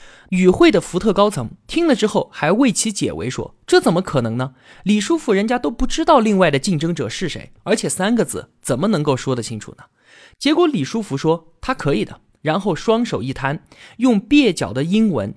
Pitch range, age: 135-225 Hz, 20-39